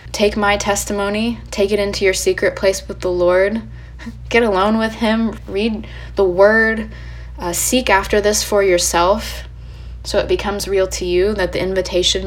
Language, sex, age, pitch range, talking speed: English, female, 10-29, 170-200 Hz, 165 wpm